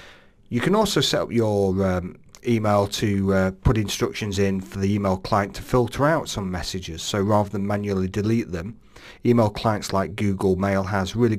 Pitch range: 95-110 Hz